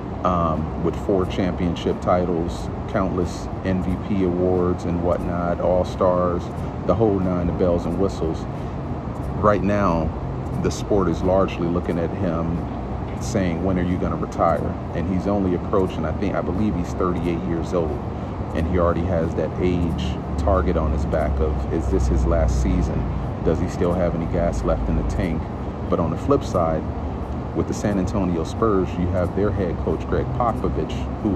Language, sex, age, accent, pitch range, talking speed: English, male, 40-59, American, 85-95 Hz, 175 wpm